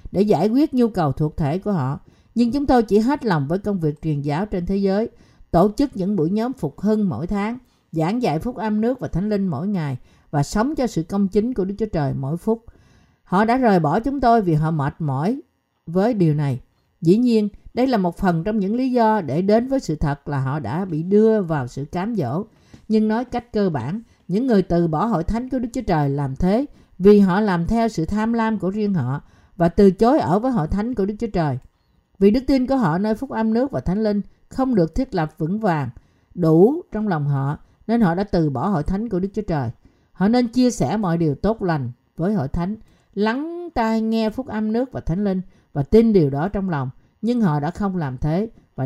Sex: female